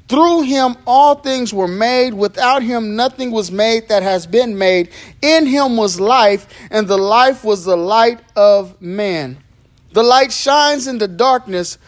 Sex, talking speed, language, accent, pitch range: male, 165 wpm, English, American, 155-215 Hz